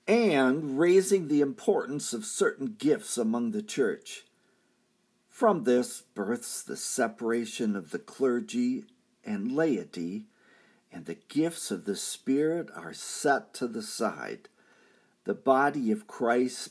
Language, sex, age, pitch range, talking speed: English, male, 50-69, 130-220 Hz, 125 wpm